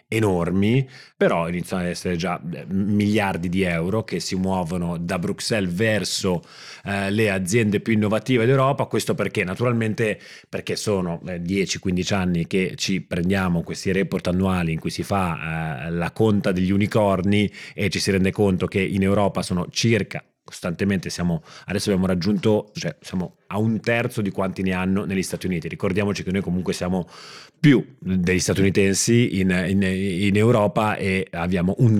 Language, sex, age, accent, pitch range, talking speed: Italian, male, 30-49, native, 90-110 Hz, 160 wpm